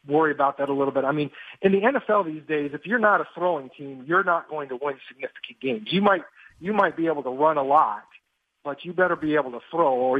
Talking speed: 260 wpm